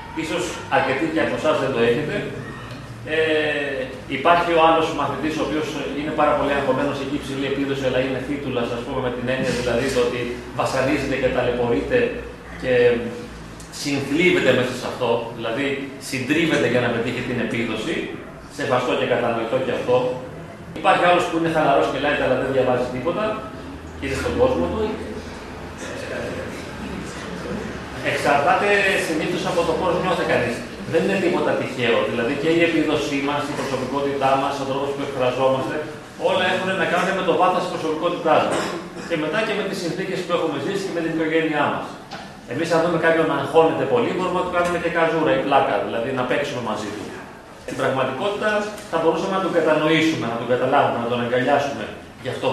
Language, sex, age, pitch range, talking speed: Greek, male, 30-49, 130-170 Hz, 170 wpm